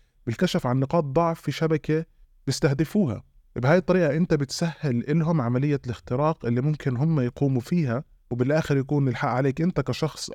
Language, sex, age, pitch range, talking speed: Arabic, male, 20-39, 120-155 Hz, 145 wpm